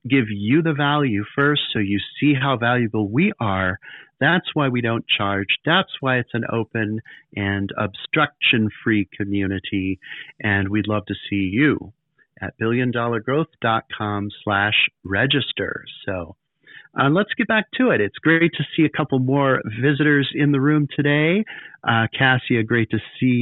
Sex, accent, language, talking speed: male, American, English, 150 wpm